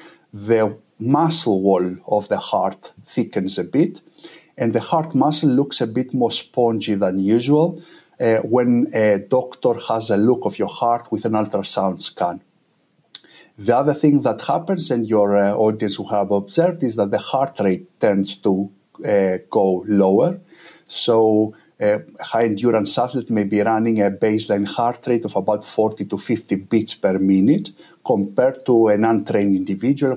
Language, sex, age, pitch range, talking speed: English, male, 50-69, 100-130 Hz, 160 wpm